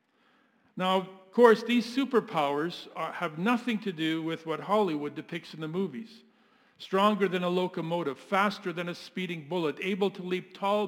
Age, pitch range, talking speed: 50-69, 170-235 Hz, 160 wpm